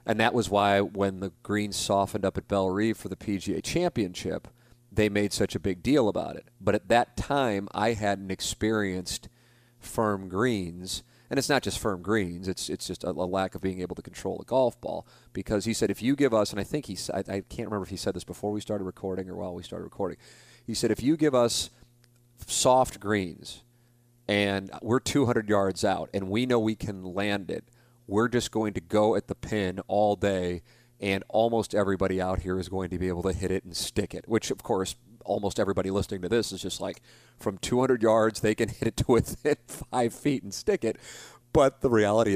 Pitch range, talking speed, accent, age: 95-115 Hz, 220 wpm, American, 40-59